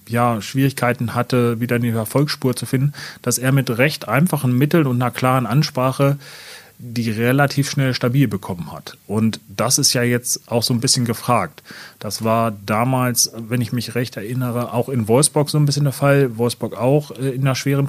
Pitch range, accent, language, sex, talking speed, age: 115-135 Hz, German, German, male, 185 wpm, 30-49